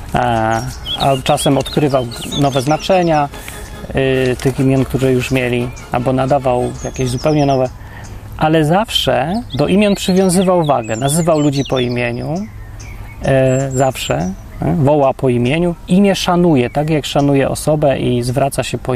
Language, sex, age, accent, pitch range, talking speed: Polish, male, 30-49, native, 120-160 Hz, 125 wpm